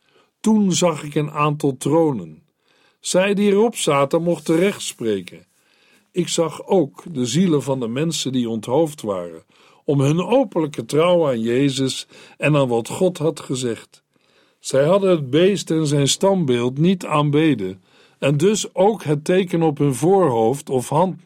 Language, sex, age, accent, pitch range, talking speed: Dutch, male, 60-79, Dutch, 140-180 Hz, 155 wpm